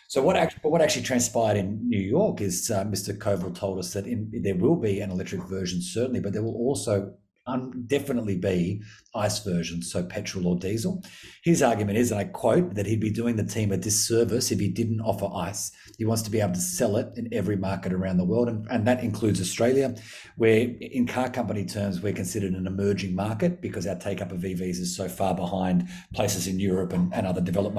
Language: English